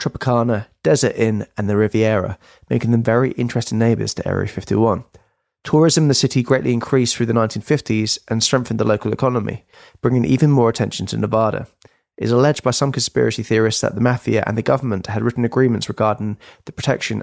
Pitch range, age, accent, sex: 110-130 Hz, 20-39, British, male